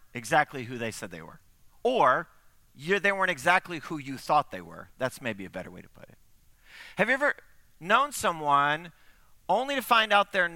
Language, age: English, 40-59